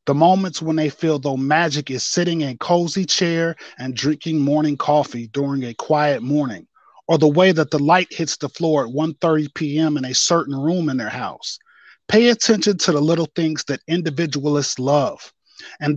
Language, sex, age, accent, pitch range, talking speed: English, male, 30-49, American, 145-180 Hz, 185 wpm